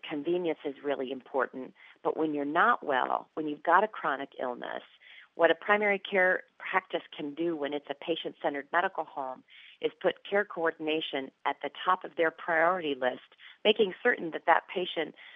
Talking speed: 170 wpm